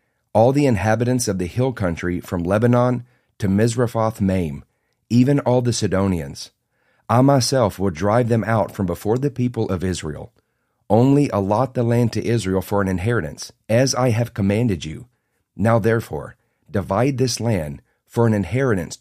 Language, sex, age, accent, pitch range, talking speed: English, male, 40-59, American, 95-120 Hz, 160 wpm